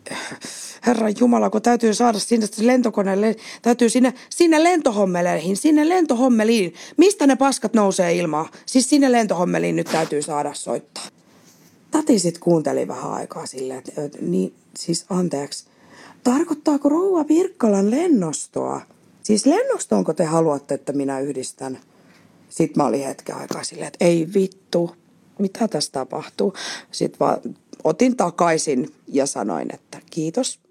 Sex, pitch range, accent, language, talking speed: female, 160-235 Hz, native, Finnish, 125 wpm